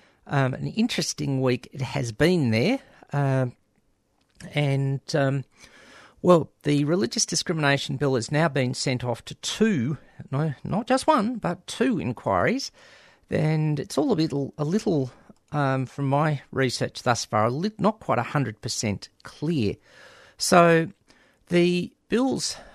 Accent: Australian